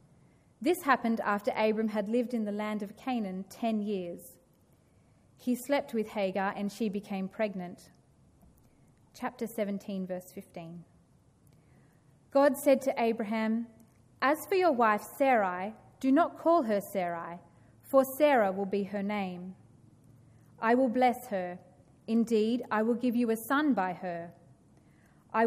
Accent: Australian